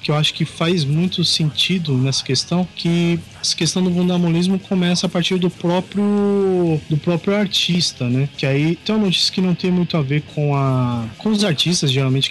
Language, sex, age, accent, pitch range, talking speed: Portuguese, male, 20-39, Brazilian, 145-185 Hz, 195 wpm